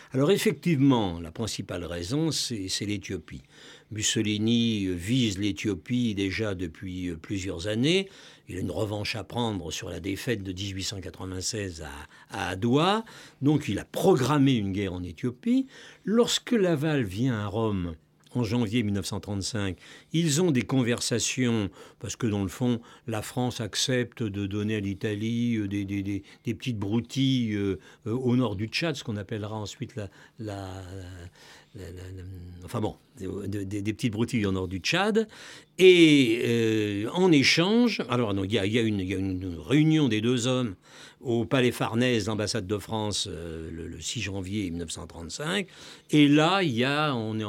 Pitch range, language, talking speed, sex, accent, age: 100-135 Hz, French, 155 wpm, male, French, 60-79